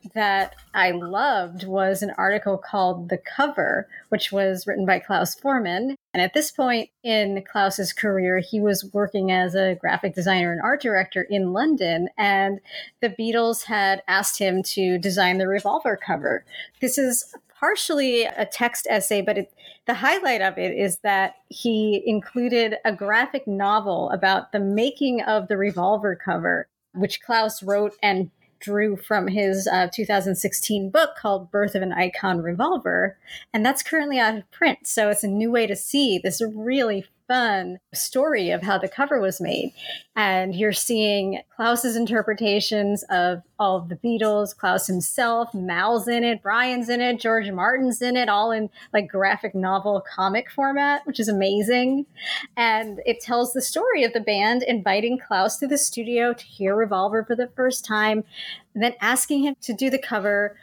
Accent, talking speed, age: American, 165 wpm, 30-49